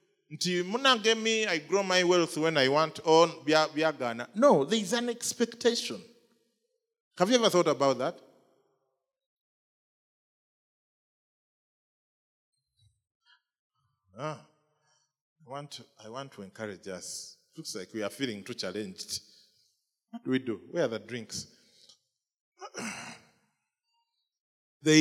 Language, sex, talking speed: English, male, 105 wpm